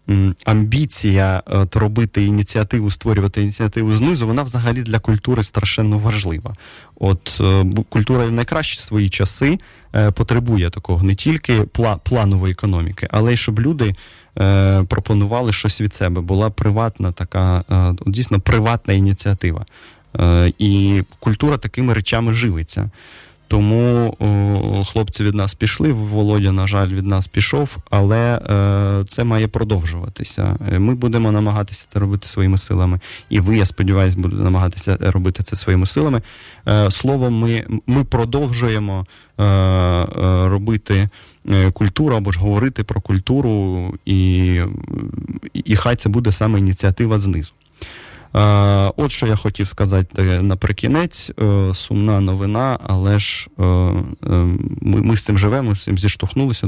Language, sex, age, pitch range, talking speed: Russian, male, 20-39, 95-115 Hz, 120 wpm